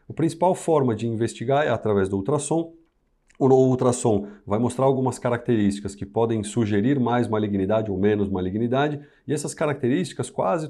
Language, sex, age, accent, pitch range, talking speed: Portuguese, male, 40-59, Brazilian, 100-140 Hz, 150 wpm